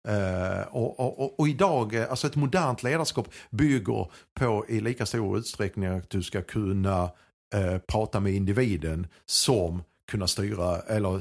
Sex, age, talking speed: male, 50-69, 145 wpm